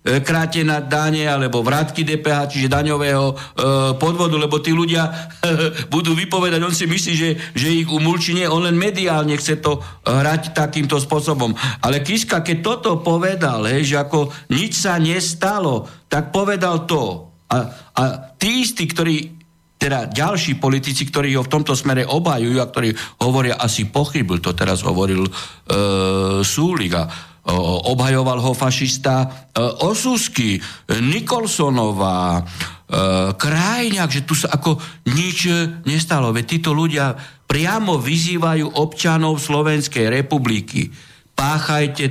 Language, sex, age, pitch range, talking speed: Slovak, male, 60-79, 130-165 Hz, 135 wpm